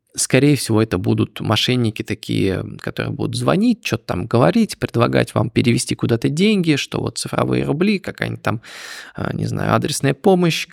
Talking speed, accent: 150 wpm, native